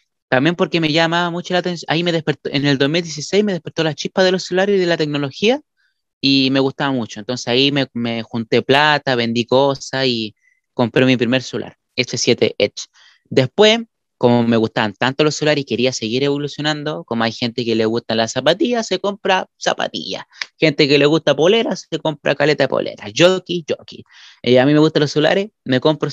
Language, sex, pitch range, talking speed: Spanish, male, 125-190 Hz, 195 wpm